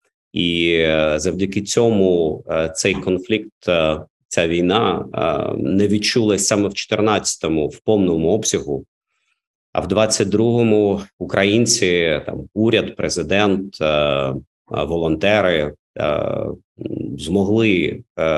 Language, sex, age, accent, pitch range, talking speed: Ukrainian, male, 50-69, native, 80-100 Hz, 80 wpm